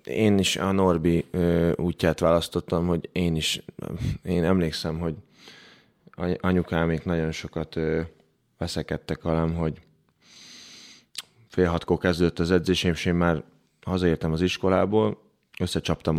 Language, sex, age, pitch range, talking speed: Hungarian, male, 20-39, 80-90 Hz, 110 wpm